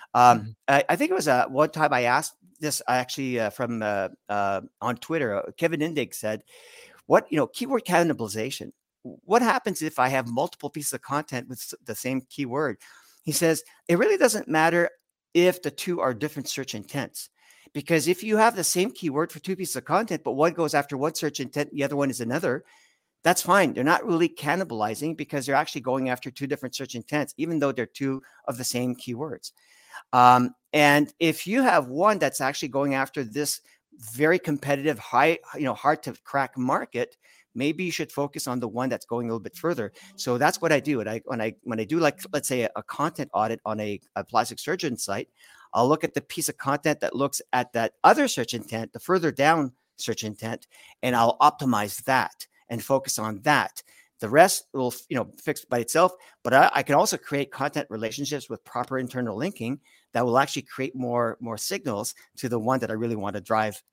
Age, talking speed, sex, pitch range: 50-69, 210 wpm, male, 120-155 Hz